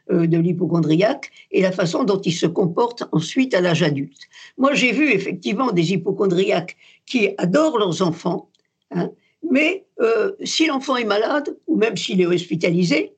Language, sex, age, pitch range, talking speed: French, female, 60-79, 175-260 Hz, 160 wpm